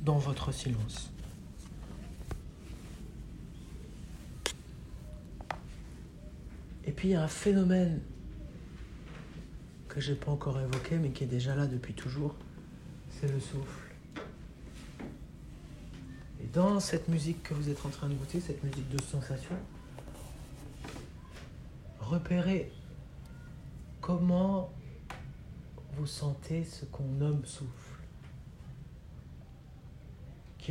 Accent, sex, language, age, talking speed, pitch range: French, male, French, 60-79, 95 wpm, 95-160 Hz